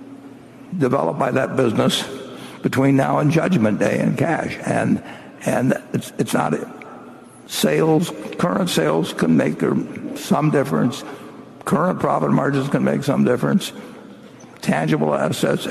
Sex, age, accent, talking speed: male, 60-79, American, 135 wpm